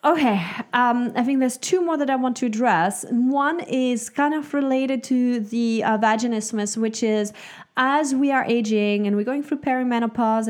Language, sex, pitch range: English, female, 215-265 Hz